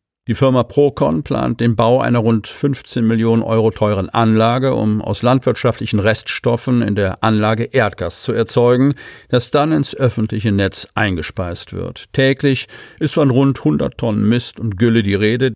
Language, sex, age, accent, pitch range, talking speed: German, male, 50-69, German, 105-125 Hz, 160 wpm